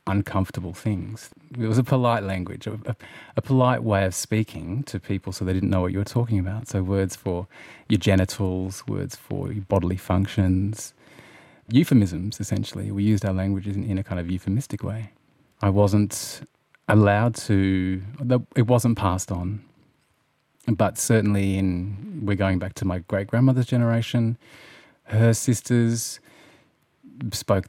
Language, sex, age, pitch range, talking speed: English, male, 30-49, 95-115 Hz, 145 wpm